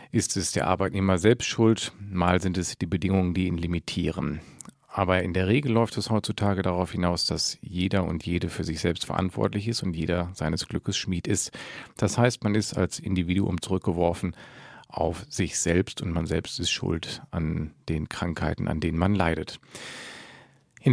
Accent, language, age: German, German, 40-59